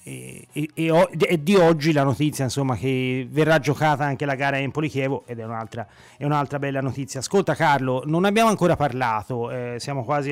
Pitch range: 125-150 Hz